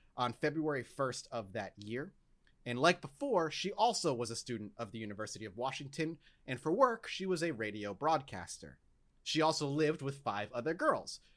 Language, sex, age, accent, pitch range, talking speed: English, male, 30-49, American, 110-155 Hz, 180 wpm